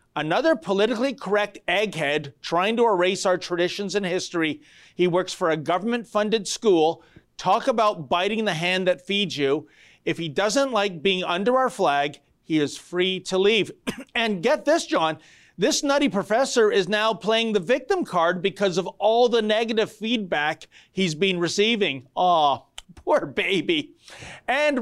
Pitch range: 175-235 Hz